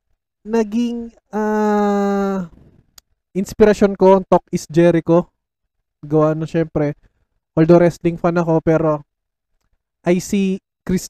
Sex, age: male, 20-39